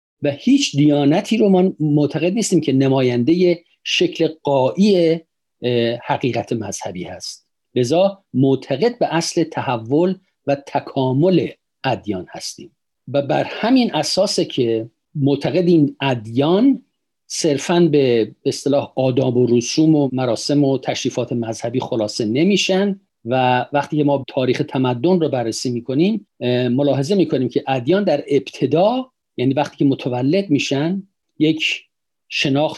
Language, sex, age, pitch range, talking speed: Persian, male, 50-69, 130-175 Hz, 120 wpm